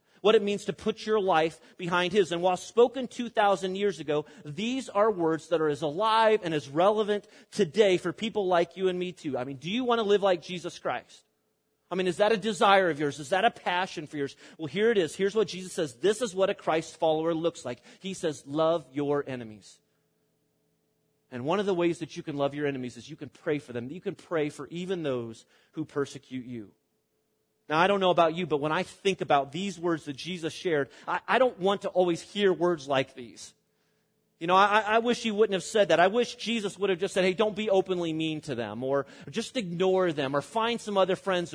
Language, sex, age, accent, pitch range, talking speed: English, male, 30-49, American, 150-205 Hz, 235 wpm